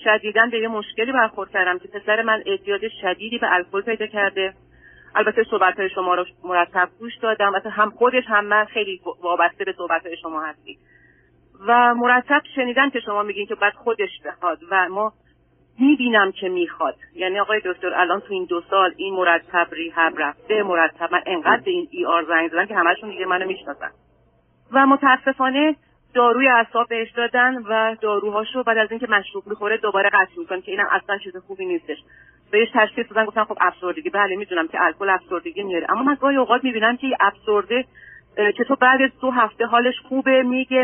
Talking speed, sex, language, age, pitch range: 180 wpm, female, Persian, 40-59, 190-240 Hz